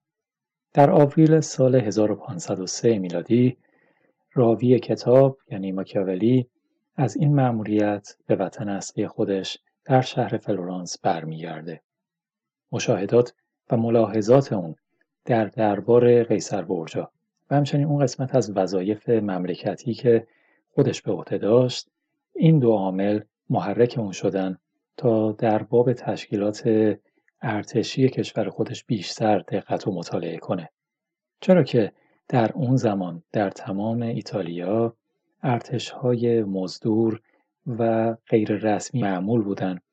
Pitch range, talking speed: 105-130 Hz, 105 wpm